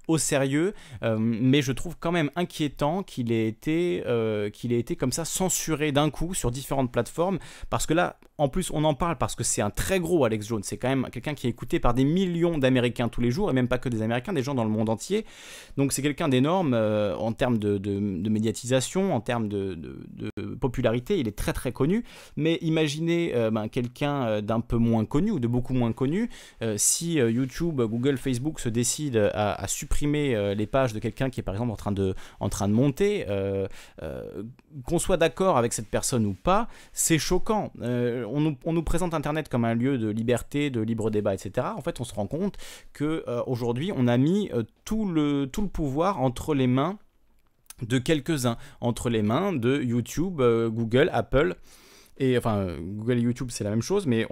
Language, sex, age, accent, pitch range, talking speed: French, male, 30-49, French, 115-150 Hz, 220 wpm